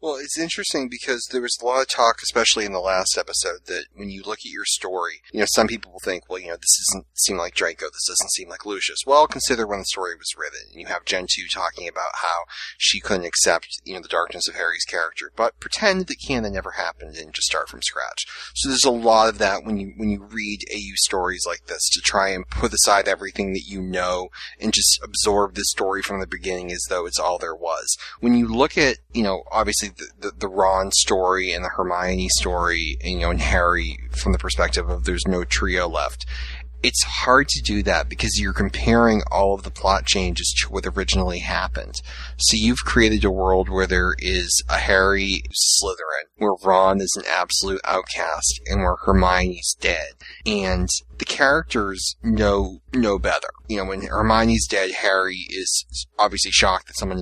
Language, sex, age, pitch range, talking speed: English, male, 30-49, 90-110 Hz, 210 wpm